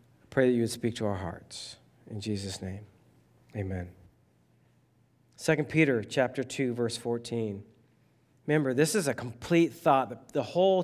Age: 40-59